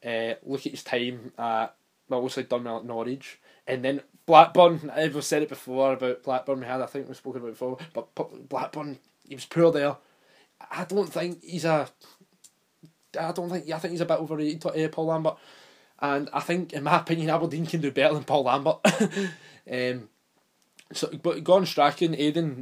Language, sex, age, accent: English, male, 20-39, British